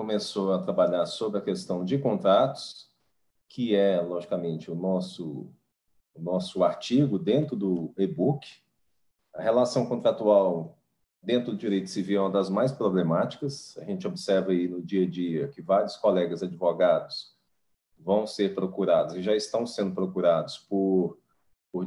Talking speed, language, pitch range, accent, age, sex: 145 wpm, Portuguese, 100-135 Hz, Brazilian, 40-59, male